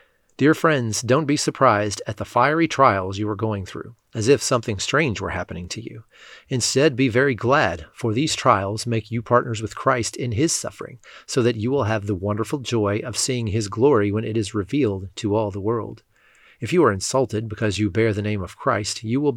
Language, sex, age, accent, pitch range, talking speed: English, male, 30-49, American, 105-125 Hz, 215 wpm